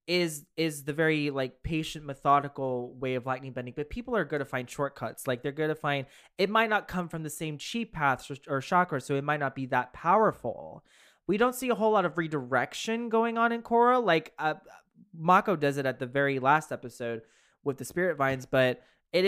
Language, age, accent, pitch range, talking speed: English, 20-39, American, 135-170 Hz, 220 wpm